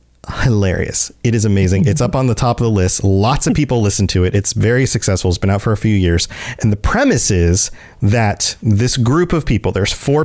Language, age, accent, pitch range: English, 40-59, American, 105-140 Hz